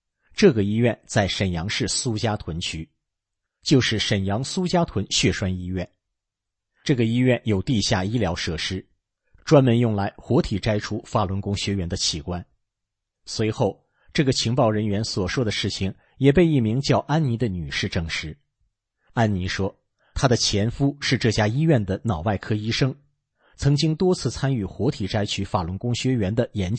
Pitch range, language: 100-130 Hz, English